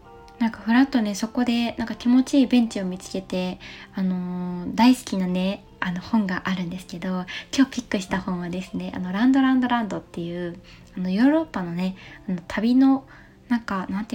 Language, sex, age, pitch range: Japanese, female, 20-39, 190-255 Hz